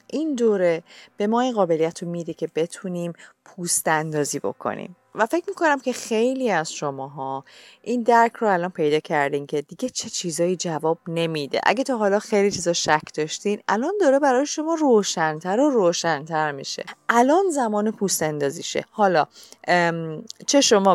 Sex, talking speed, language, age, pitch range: female, 150 wpm, Persian, 30-49, 160-220 Hz